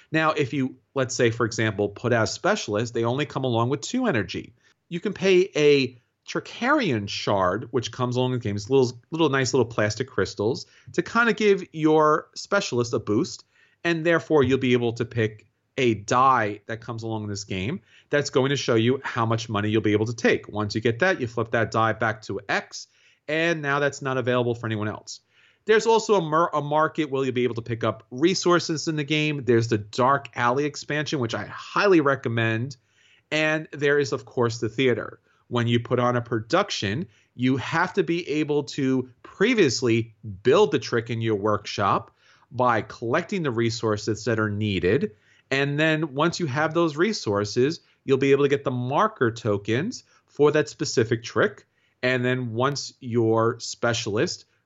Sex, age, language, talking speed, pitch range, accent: male, 40-59, English, 190 wpm, 115-150 Hz, American